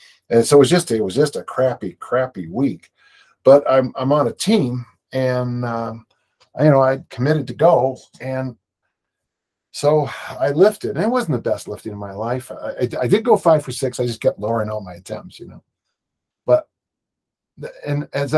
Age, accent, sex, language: 50-69, American, male, English